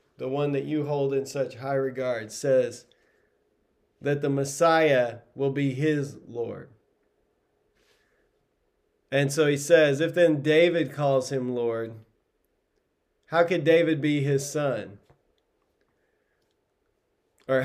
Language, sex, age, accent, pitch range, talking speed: English, male, 40-59, American, 135-175 Hz, 115 wpm